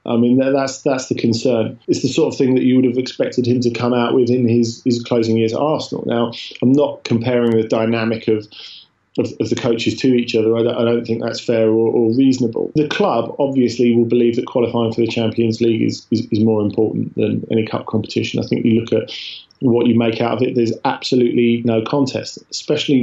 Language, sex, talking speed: English, male, 225 wpm